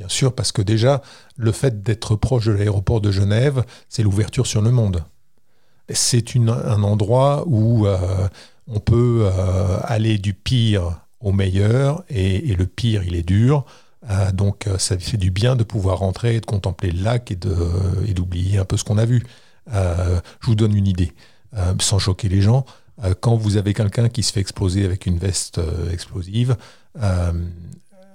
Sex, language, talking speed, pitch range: male, French, 180 wpm, 95-120 Hz